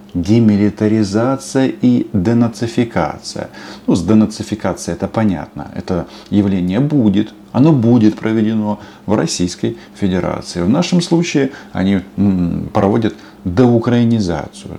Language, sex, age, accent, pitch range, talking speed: Russian, male, 40-59, native, 90-115 Hz, 95 wpm